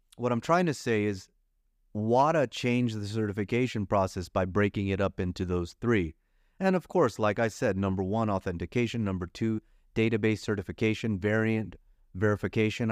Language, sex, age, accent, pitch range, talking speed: English, male, 30-49, American, 100-120 Hz, 155 wpm